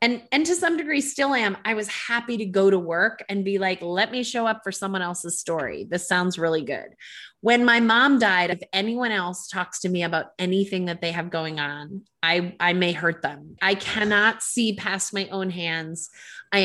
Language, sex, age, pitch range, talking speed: English, female, 30-49, 165-200 Hz, 215 wpm